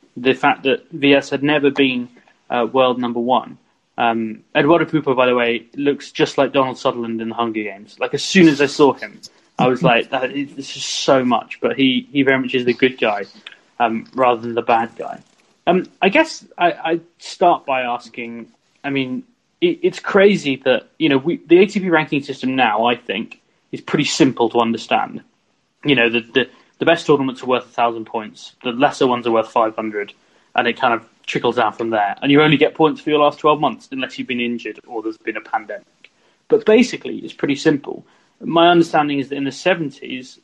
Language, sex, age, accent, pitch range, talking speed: English, male, 20-39, British, 125-170 Hz, 210 wpm